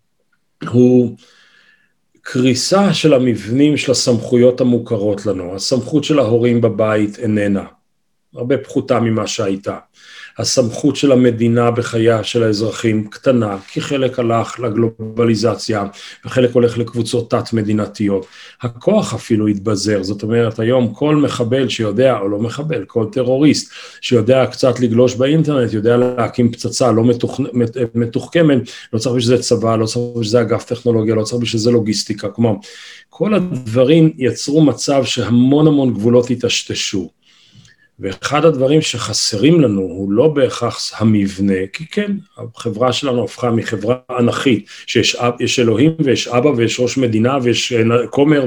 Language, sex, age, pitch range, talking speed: Hebrew, male, 40-59, 115-140 Hz, 130 wpm